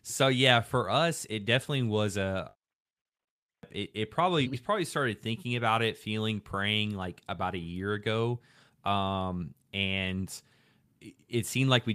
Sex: male